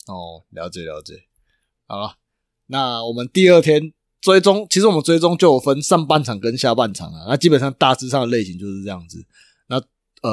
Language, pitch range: Chinese, 110-150 Hz